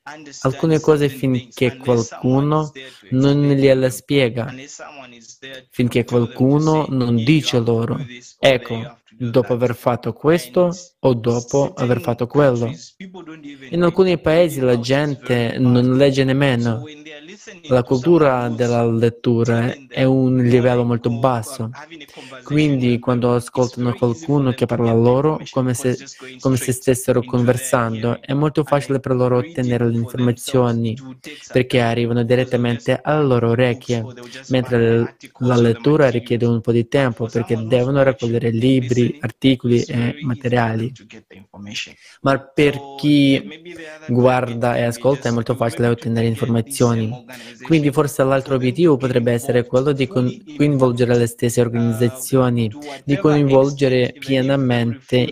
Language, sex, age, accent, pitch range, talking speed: Italian, male, 20-39, native, 120-135 Hz, 115 wpm